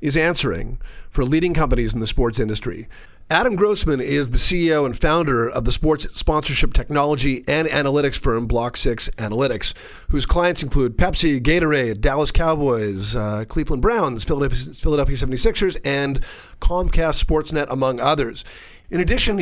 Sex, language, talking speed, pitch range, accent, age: male, English, 145 wpm, 120-155 Hz, American, 40-59